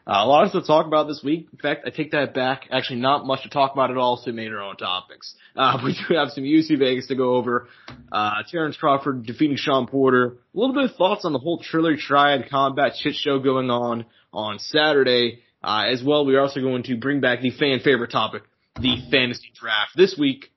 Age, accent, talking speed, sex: 20-39, American, 240 wpm, male